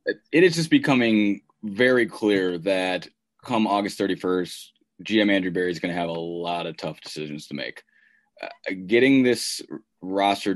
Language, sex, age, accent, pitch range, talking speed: English, male, 20-39, American, 90-100 Hz, 160 wpm